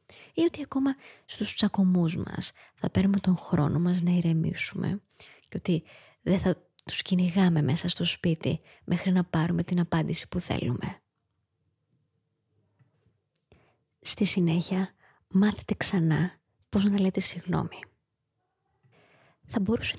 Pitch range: 160-190 Hz